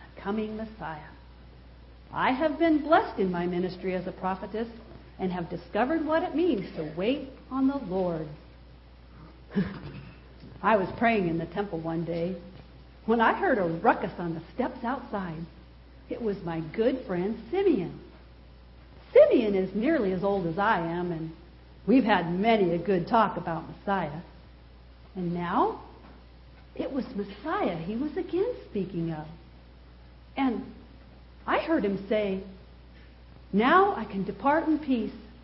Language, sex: English, female